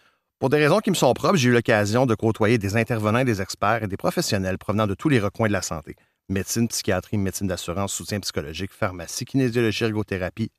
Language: French